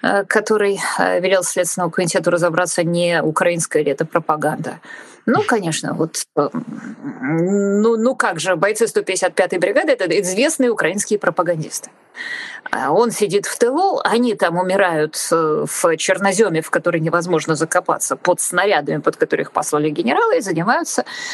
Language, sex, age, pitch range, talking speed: Russian, female, 20-39, 175-250 Hz, 130 wpm